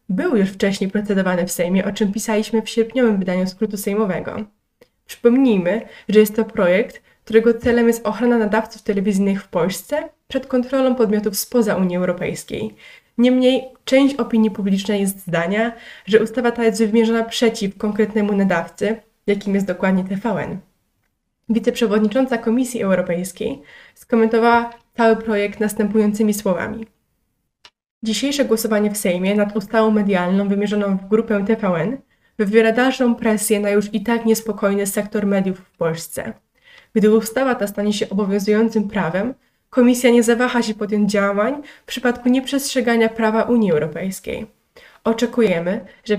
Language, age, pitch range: Polish, 20-39, 200-235 Hz